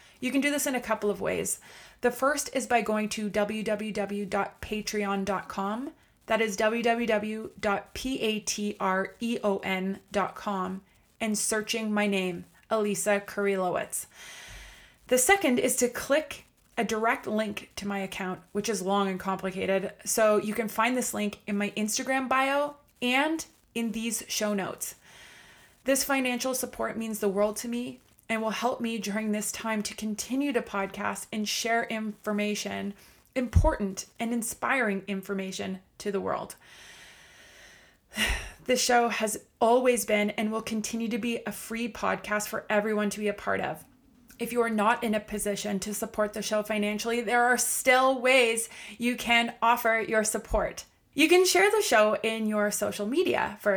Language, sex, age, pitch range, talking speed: English, female, 20-39, 205-240 Hz, 150 wpm